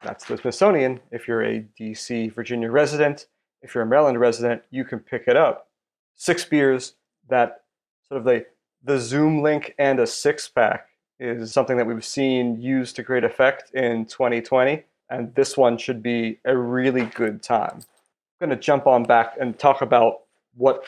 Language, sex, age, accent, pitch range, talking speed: English, male, 30-49, American, 120-150 Hz, 180 wpm